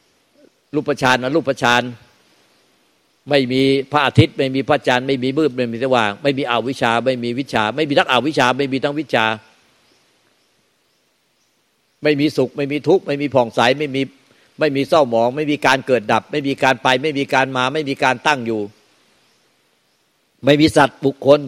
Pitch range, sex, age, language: 115-140 Hz, male, 60-79, Thai